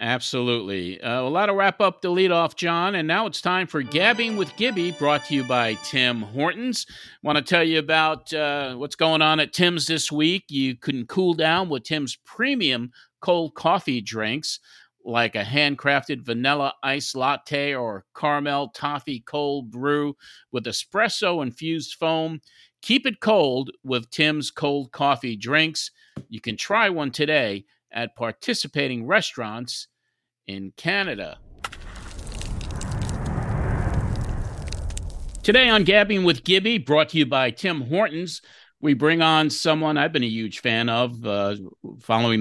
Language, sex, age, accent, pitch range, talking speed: English, male, 50-69, American, 125-160 Hz, 145 wpm